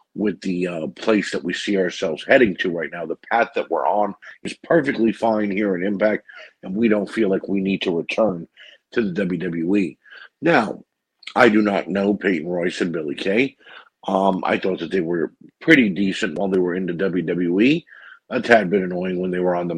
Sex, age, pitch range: male, 50-69, 95-110 Hz